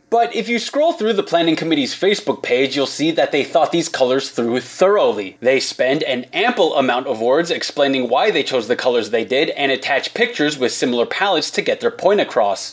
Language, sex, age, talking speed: English, male, 20-39, 210 wpm